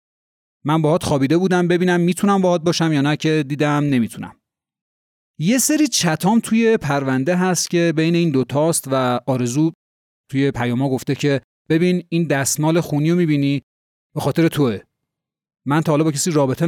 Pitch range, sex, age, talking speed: 130-180 Hz, male, 30-49, 155 wpm